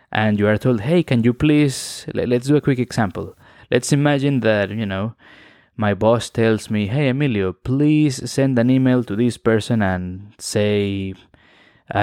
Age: 20-39